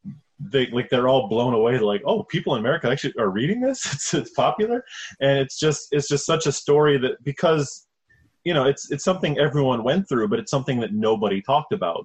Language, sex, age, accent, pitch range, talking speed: English, male, 20-39, American, 110-140 Hz, 215 wpm